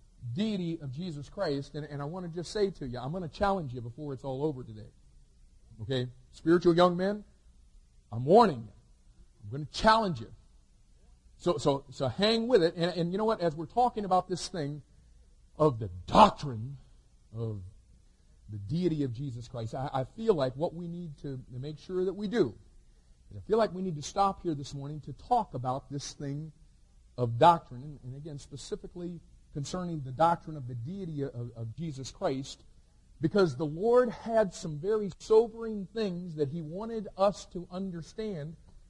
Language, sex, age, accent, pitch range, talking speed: English, male, 50-69, American, 130-185 Hz, 185 wpm